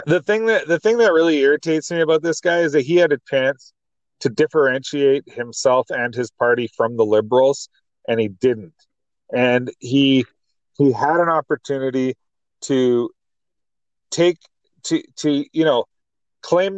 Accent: American